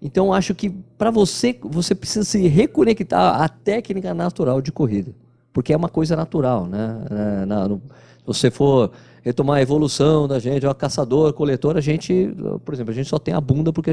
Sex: male